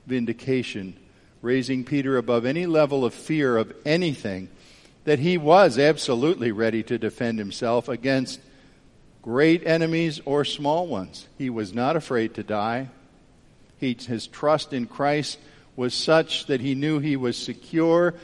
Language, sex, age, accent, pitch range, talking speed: English, male, 50-69, American, 125-170 Hz, 140 wpm